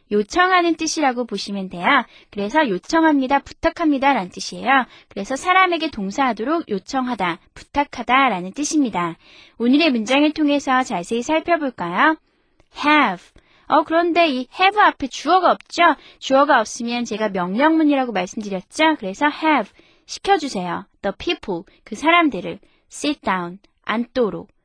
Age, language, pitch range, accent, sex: 20-39, Korean, 210-315 Hz, native, female